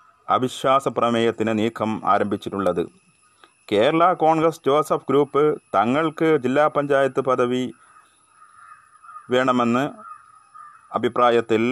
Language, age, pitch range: Malayalam, 30-49, 115-155 Hz